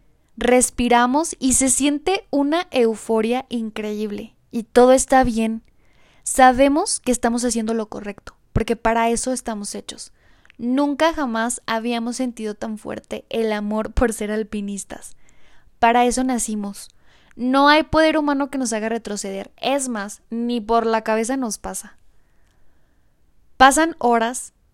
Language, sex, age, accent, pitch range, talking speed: Spanish, female, 10-29, Mexican, 220-265 Hz, 130 wpm